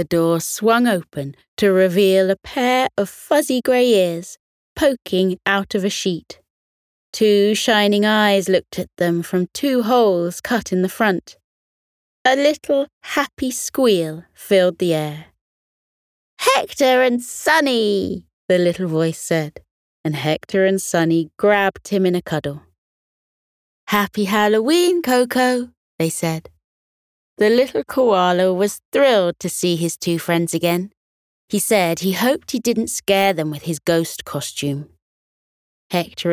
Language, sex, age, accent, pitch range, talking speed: English, female, 30-49, British, 160-225 Hz, 135 wpm